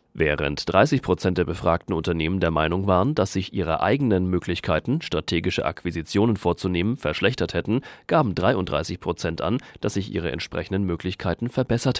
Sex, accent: male, German